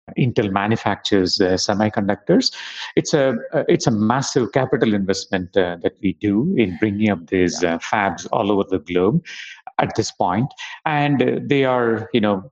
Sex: male